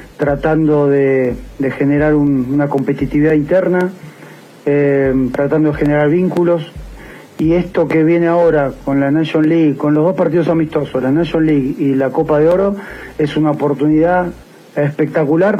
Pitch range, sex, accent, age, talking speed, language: 145-170 Hz, male, Argentinian, 40-59, 150 wpm, Spanish